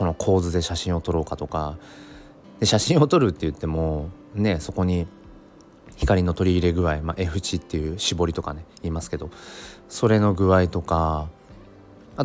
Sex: male